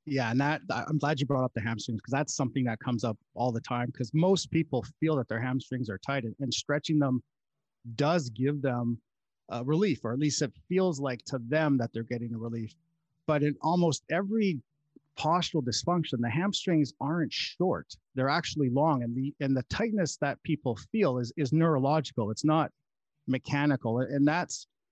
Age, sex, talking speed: 30-49, male, 190 wpm